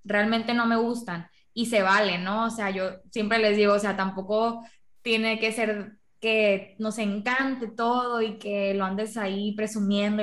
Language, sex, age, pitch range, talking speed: Spanish, female, 10-29, 200-230 Hz, 175 wpm